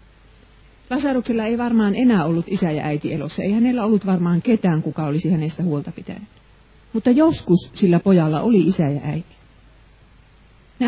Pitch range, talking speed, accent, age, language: 160-220 Hz, 155 wpm, native, 40-59, Finnish